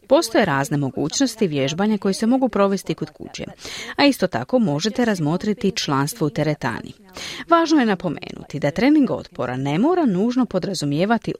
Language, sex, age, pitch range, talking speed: Croatian, female, 40-59, 155-235 Hz, 145 wpm